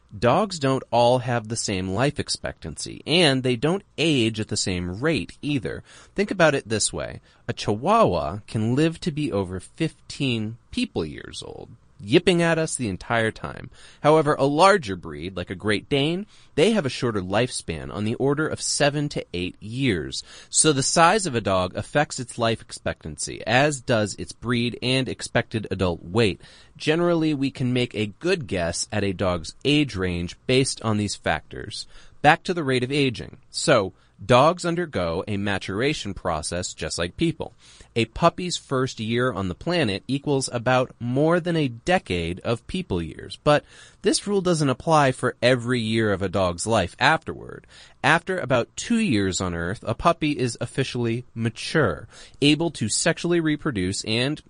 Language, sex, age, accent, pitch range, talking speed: English, male, 30-49, American, 105-155 Hz, 170 wpm